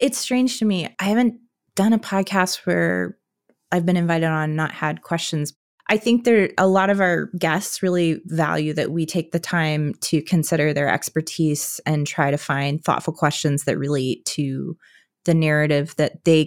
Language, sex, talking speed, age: English, female, 180 wpm, 20-39